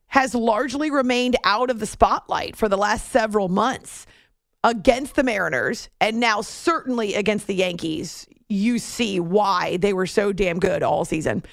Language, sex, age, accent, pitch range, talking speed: English, female, 40-59, American, 195-265 Hz, 160 wpm